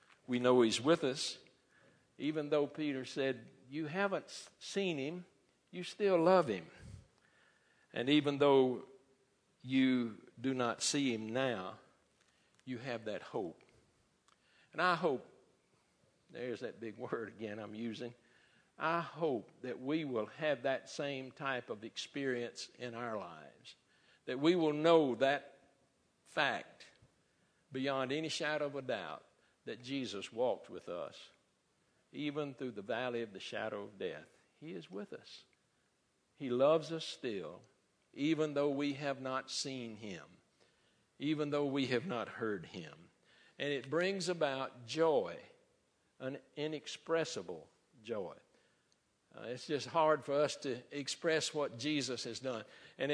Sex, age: male, 60-79